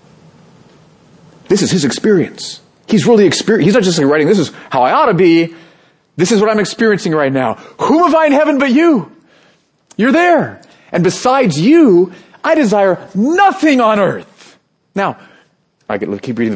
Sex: male